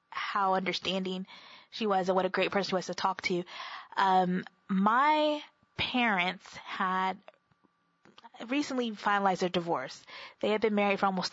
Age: 20-39